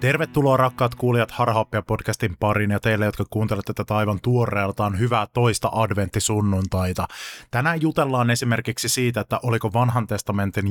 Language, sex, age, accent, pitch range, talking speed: Finnish, male, 20-39, native, 100-120 Hz, 130 wpm